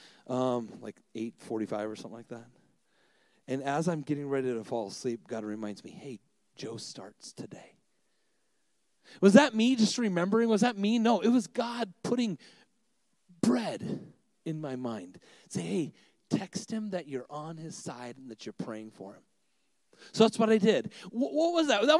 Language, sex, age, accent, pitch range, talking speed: English, male, 40-59, American, 195-265 Hz, 170 wpm